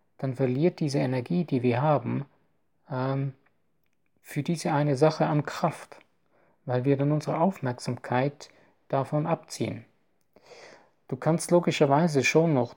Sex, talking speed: male, 115 wpm